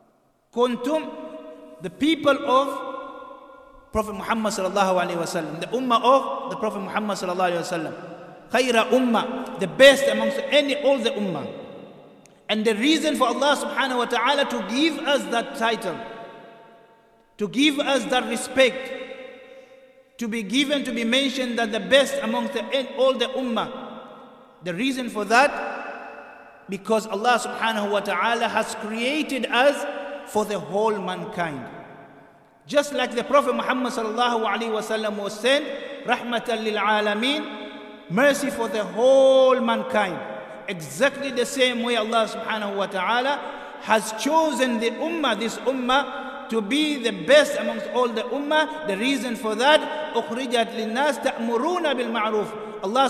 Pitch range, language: 220-270 Hz, English